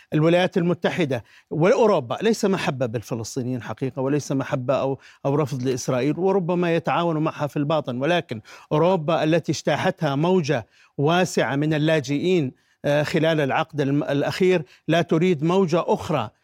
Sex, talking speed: male, 120 wpm